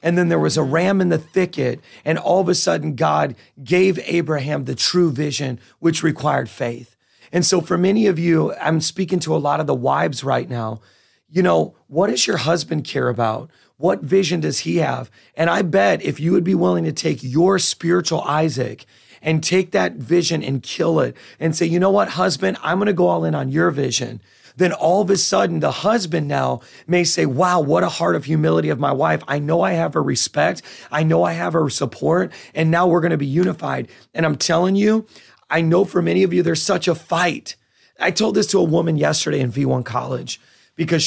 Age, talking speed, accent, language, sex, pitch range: 30-49, 220 wpm, American, English, male, 140-180 Hz